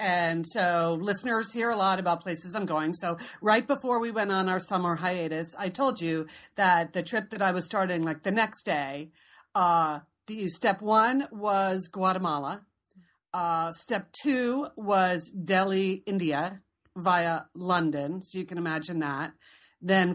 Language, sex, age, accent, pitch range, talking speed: English, female, 40-59, American, 175-225 Hz, 160 wpm